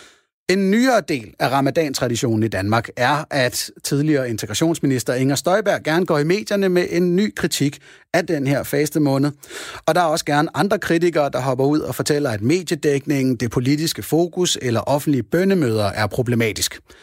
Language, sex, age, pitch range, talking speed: Danish, male, 30-49, 125-165 Hz, 170 wpm